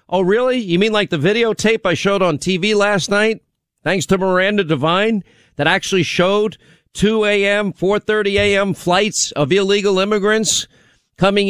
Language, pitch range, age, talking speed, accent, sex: English, 160-205 Hz, 50-69, 150 wpm, American, male